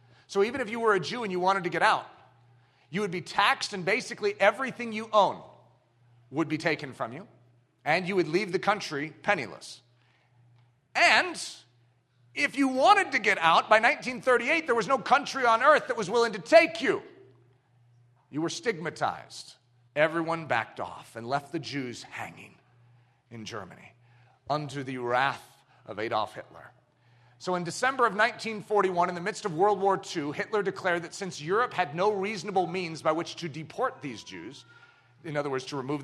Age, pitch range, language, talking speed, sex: 40-59, 125-200 Hz, English, 175 wpm, male